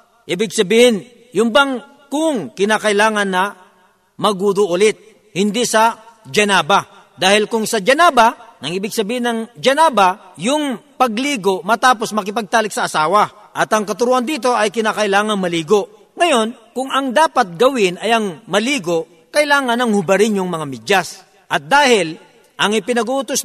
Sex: male